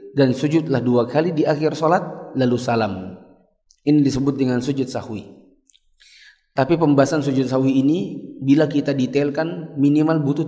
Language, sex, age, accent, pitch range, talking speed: Indonesian, male, 20-39, native, 125-160 Hz, 135 wpm